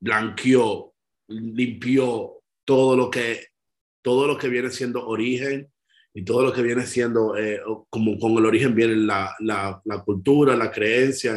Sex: male